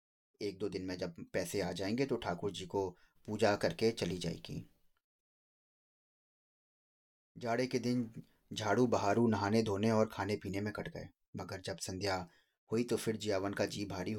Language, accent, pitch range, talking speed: Hindi, native, 90-110 Hz, 165 wpm